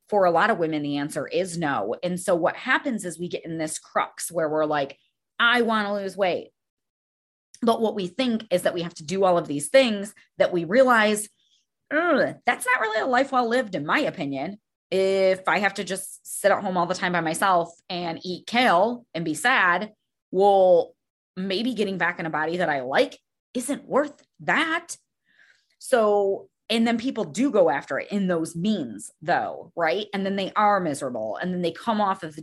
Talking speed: 205 wpm